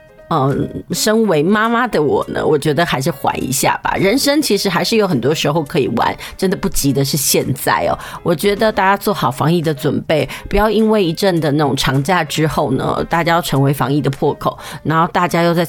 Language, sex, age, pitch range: Chinese, female, 30-49, 150-215 Hz